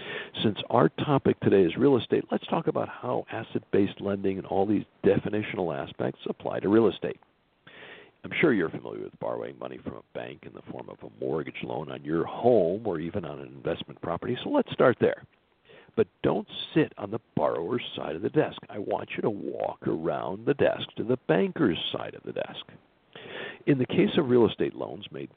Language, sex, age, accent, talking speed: English, male, 60-79, American, 200 wpm